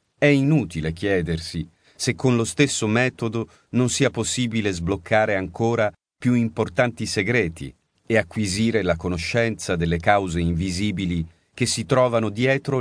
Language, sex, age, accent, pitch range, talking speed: Italian, male, 40-59, native, 90-125 Hz, 125 wpm